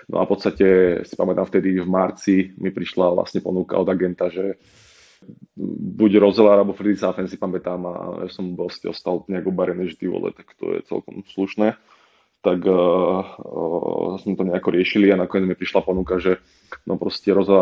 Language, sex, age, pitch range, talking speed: Slovak, male, 20-39, 90-100 Hz, 170 wpm